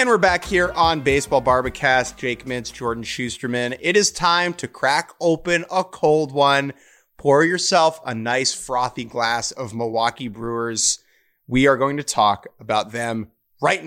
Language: English